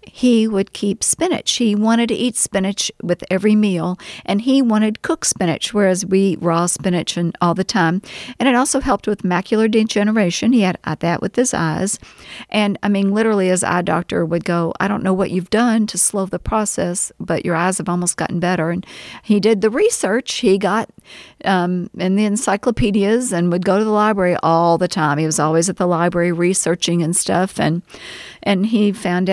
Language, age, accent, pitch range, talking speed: English, 50-69, American, 180-225 Hz, 200 wpm